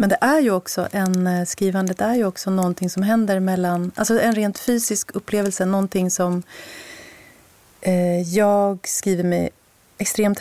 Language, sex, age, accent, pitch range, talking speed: Swedish, female, 30-49, native, 180-205 Hz, 145 wpm